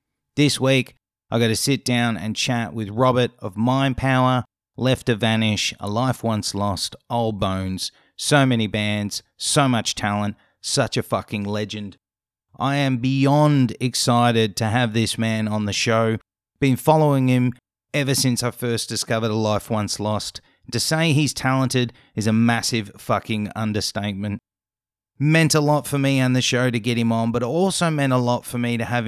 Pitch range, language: 110-130 Hz, English